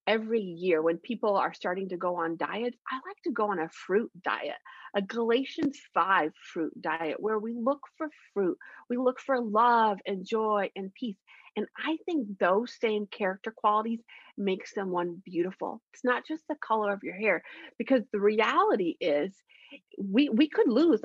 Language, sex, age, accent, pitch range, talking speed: English, female, 30-49, American, 195-265 Hz, 175 wpm